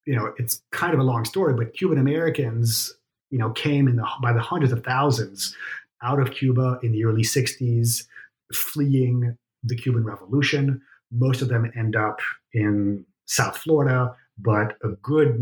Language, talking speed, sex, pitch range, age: English, 165 wpm, male, 110-135 Hz, 30-49